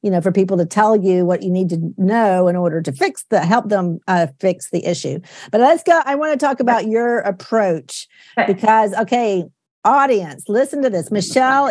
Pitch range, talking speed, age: 200-260 Hz, 205 wpm, 50-69